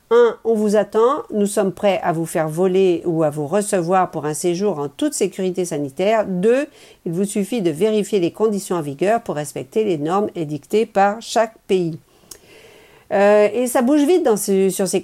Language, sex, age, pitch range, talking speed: French, female, 50-69, 170-220 Hz, 195 wpm